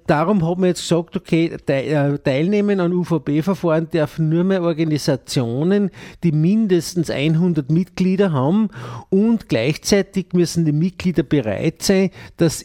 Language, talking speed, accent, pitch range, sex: German, 125 wpm, Austrian, 150-180 Hz, male